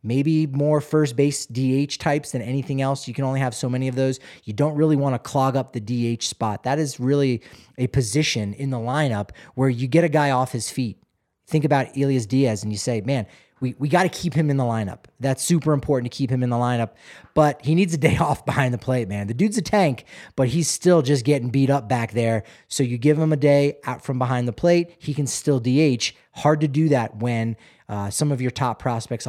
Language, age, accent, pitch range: English, 30-49, American, 125-150 Hz